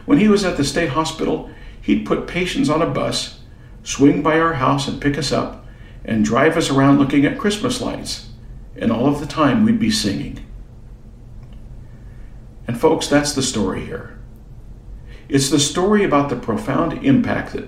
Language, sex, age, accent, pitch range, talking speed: English, male, 50-69, American, 115-145 Hz, 175 wpm